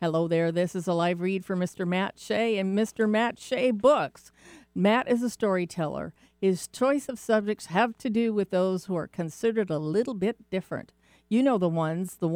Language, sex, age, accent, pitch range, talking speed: English, female, 50-69, American, 160-205 Hz, 200 wpm